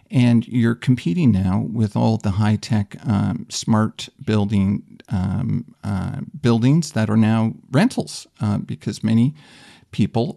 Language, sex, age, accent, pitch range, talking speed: English, male, 50-69, American, 110-130 Hz, 135 wpm